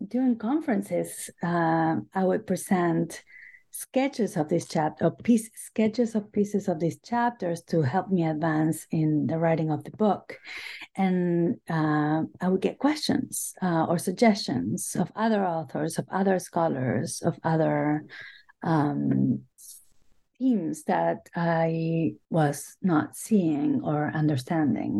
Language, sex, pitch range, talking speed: English, female, 155-190 Hz, 125 wpm